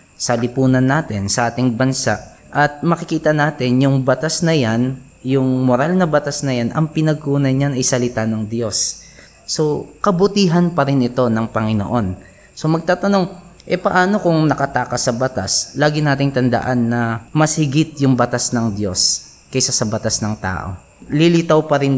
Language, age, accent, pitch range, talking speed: Filipino, 20-39, native, 120-140 Hz, 160 wpm